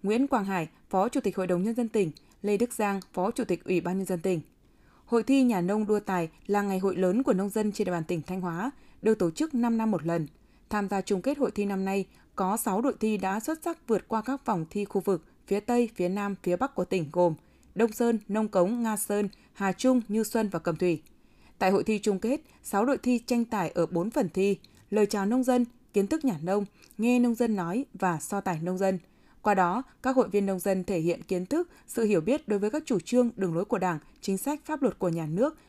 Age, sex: 20-39, female